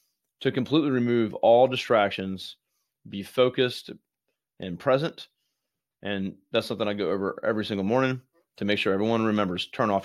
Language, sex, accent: English, male, American